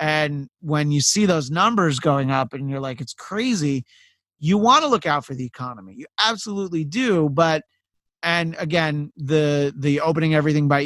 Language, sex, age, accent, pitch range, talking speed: English, male, 30-49, American, 145-185 Hz, 175 wpm